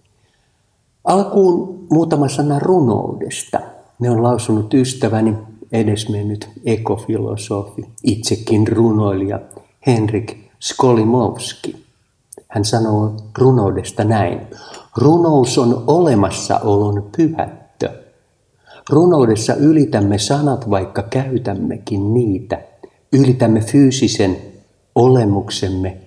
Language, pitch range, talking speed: Finnish, 105-125 Hz, 70 wpm